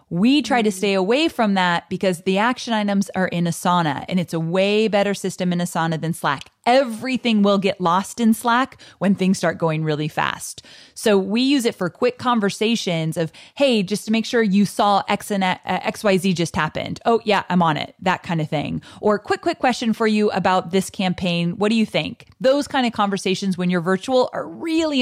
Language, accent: English, American